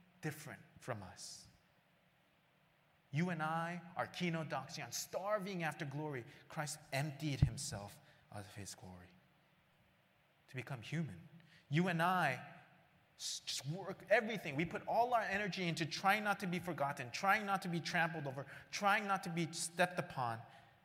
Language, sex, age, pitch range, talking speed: English, male, 30-49, 120-175 Hz, 145 wpm